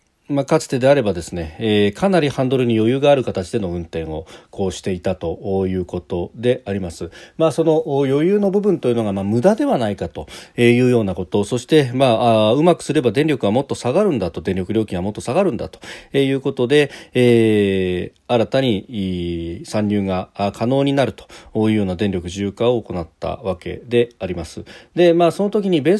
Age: 40-59